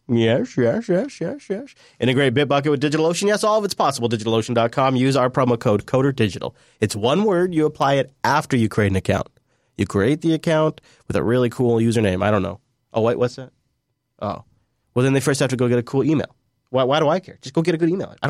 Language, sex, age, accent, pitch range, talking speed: English, male, 30-49, American, 115-150 Hz, 235 wpm